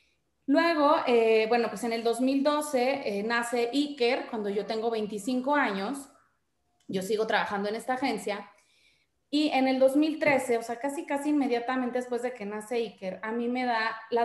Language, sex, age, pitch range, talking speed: Spanish, female, 30-49, 215-260 Hz, 170 wpm